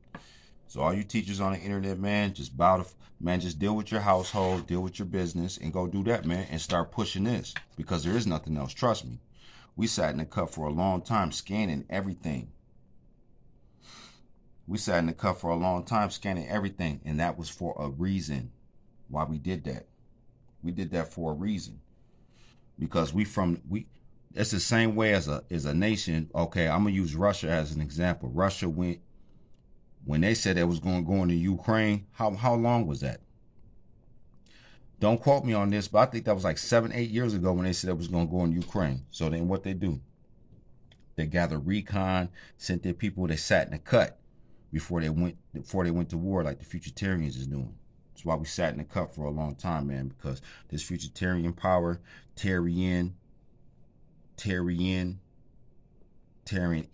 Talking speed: 200 wpm